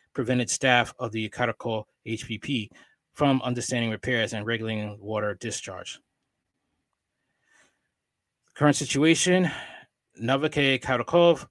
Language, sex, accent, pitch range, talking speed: English, male, American, 115-135 Hz, 95 wpm